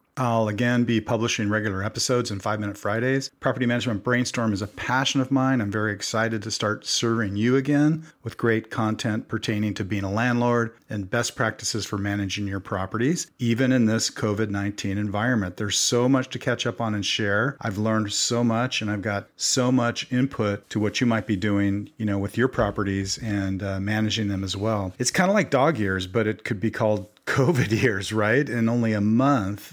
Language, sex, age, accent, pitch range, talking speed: English, male, 40-59, American, 105-125 Hz, 200 wpm